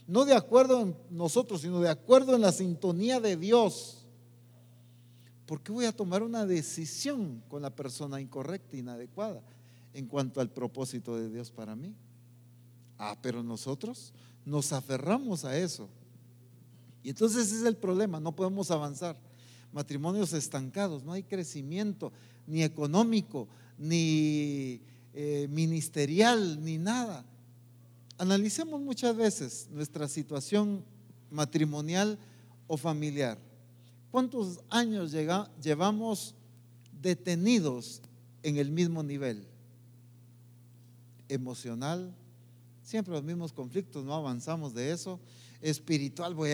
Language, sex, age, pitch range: English, male, 50-69, 120-185 Hz